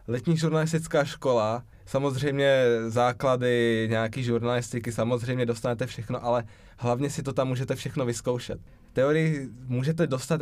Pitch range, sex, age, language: 120-145 Hz, male, 20-39, Czech